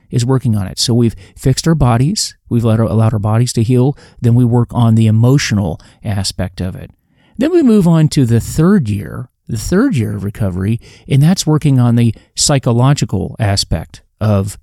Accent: American